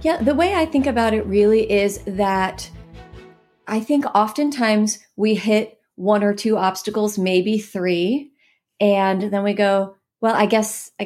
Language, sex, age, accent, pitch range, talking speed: English, female, 30-49, American, 185-235 Hz, 155 wpm